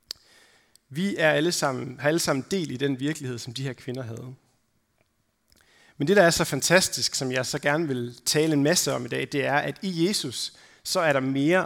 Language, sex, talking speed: Danish, male, 215 wpm